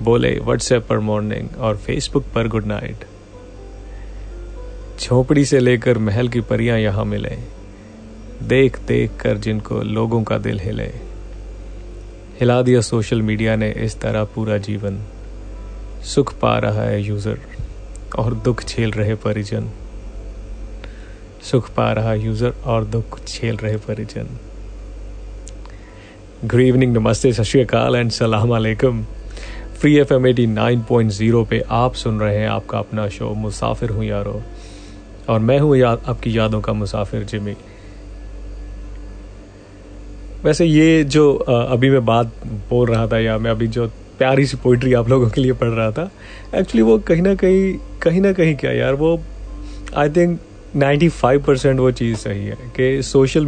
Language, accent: English, Indian